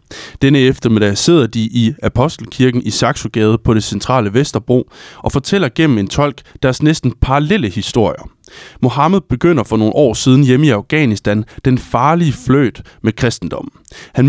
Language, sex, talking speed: Danish, male, 150 wpm